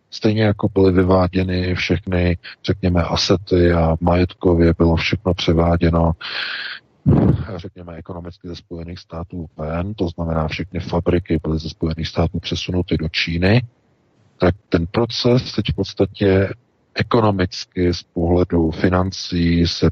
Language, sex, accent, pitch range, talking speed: Czech, male, native, 85-95 Hz, 120 wpm